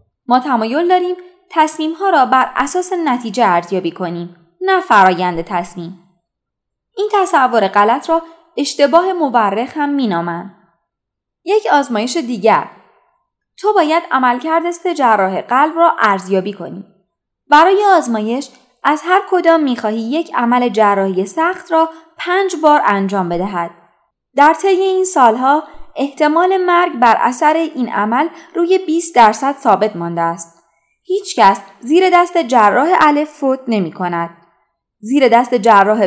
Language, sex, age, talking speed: Persian, female, 20-39, 125 wpm